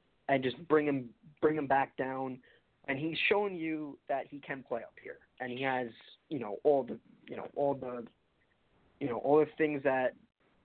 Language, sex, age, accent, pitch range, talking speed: English, male, 20-39, American, 125-150 Hz, 195 wpm